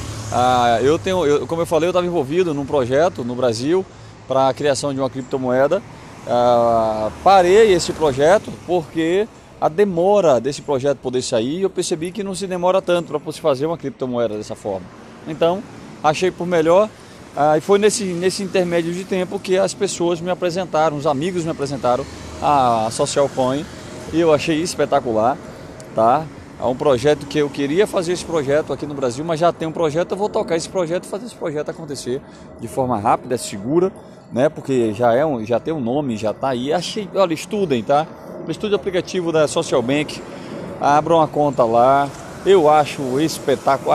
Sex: male